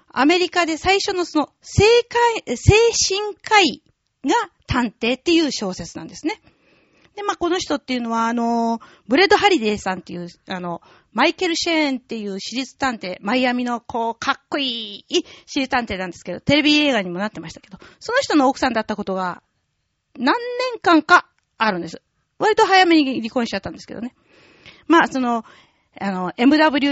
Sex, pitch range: female, 230-315 Hz